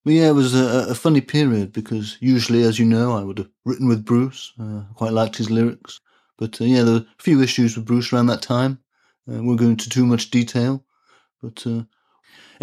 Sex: male